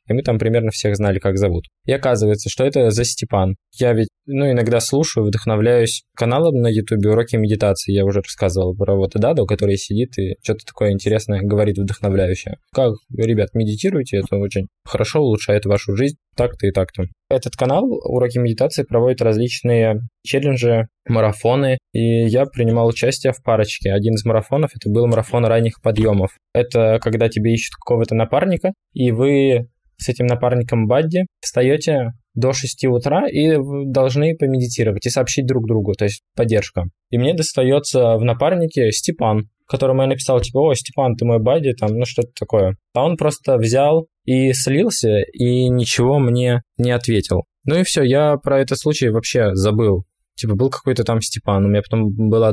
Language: Russian